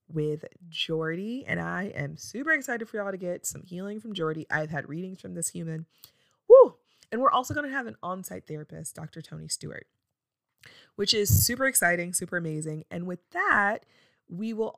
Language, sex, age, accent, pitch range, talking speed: English, female, 20-39, American, 160-205 Hz, 185 wpm